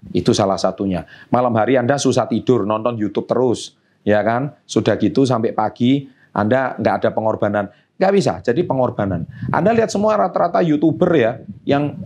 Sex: male